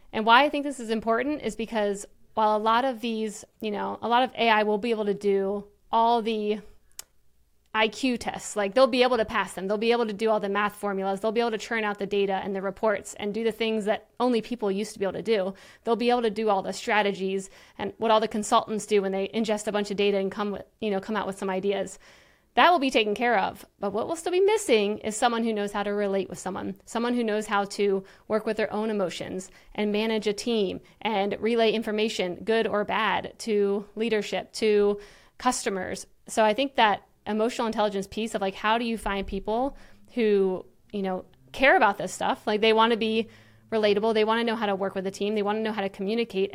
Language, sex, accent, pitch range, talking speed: English, female, American, 200-225 Hz, 245 wpm